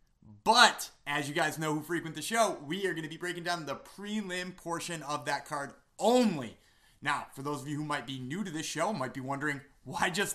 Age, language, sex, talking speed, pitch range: 30-49, English, male, 230 wpm, 140-200 Hz